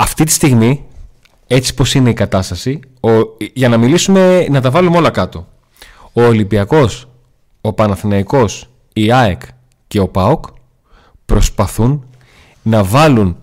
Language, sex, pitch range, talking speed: Greek, male, 105-140 Hz, 130 wpm